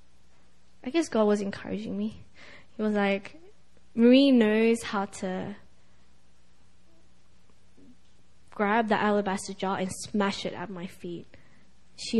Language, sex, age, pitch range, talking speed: English, female, 20-39, 205-255 Hz, 120 wpm